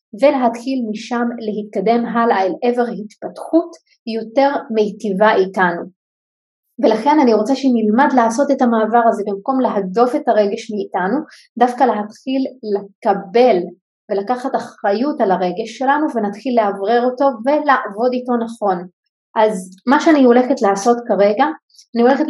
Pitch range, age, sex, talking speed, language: 210-250 Hz, 30-49, female, 120 wpm, Hebrew